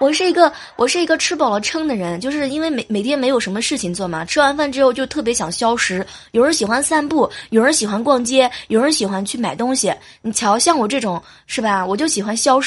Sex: female